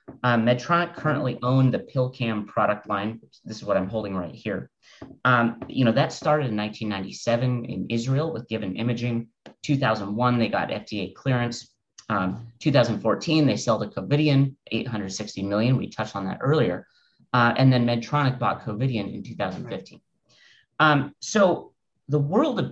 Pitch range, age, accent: 110-140 Hz, 30-49, American